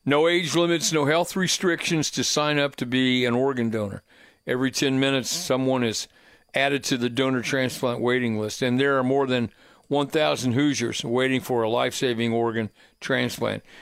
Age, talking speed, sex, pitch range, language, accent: 60-79, 170 wpm, male, 125-145 Hz, English, American